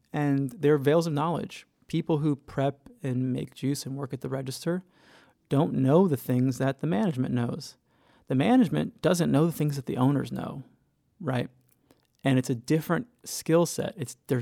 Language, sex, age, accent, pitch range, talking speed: English, male, 20-39, American, 125-145 Hz, 180 wpm